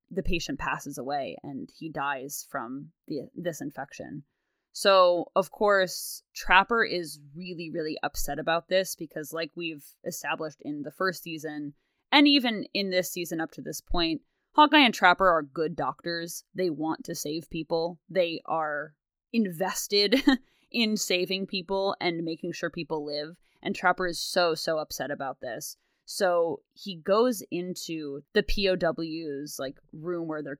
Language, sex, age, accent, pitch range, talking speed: English, female, 20-39, American, 155-200 Hz, 150 wpm